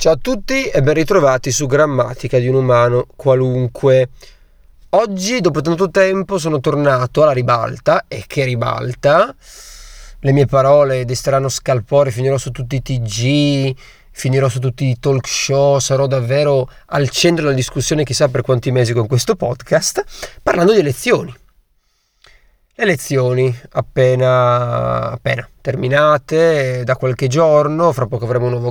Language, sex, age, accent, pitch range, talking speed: Italian, male, 30-49, native, 125-145 Hz, 140 wpm